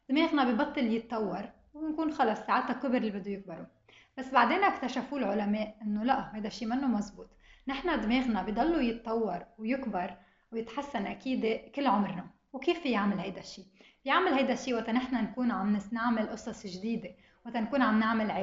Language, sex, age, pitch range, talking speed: Arabic, female, 20-39, 215-260 Hz, 155 wpm